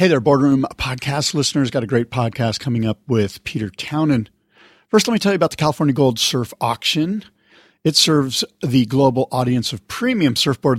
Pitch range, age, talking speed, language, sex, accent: 125-165 Hz, 50-69, 185 wpm, English, male, American